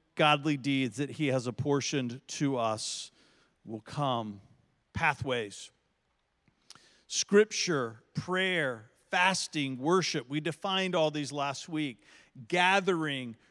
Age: 50-69